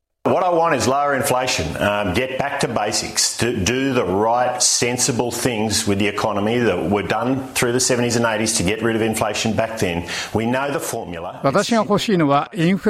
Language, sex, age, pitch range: Japanese, male, 60-79, 125-175 Hz